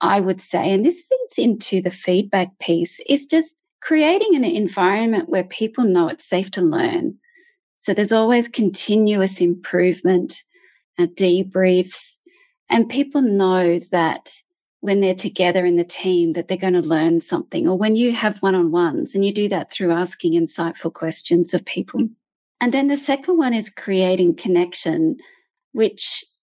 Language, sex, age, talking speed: English, female, 30-49, 155 wpm